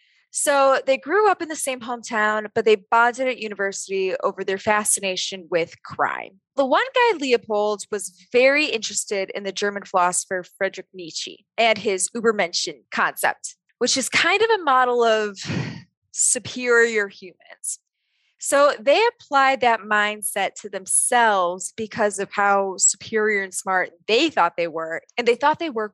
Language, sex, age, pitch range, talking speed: English, female, 20-39, 195-255 Hz, 155 wpm